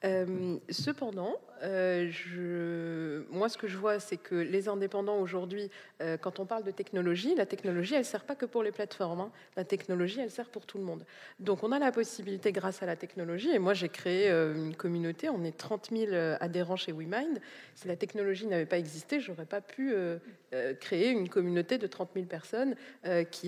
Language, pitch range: French, 175-215 Hz